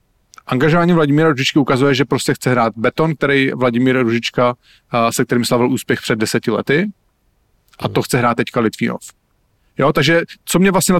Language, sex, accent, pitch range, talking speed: English, male, Czech, 115-140 Hz, 165 wpm